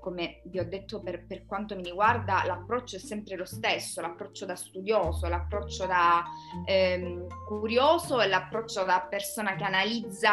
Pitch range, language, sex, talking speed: 185-250 Hz, Italian, female, 150 wpm